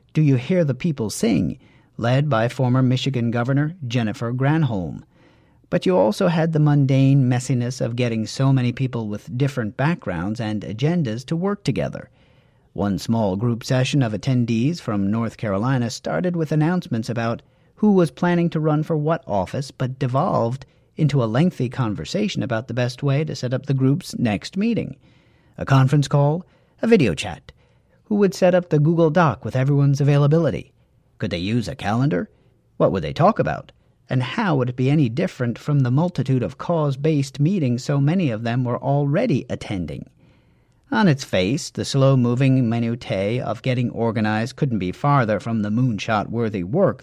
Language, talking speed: English, 170 wpm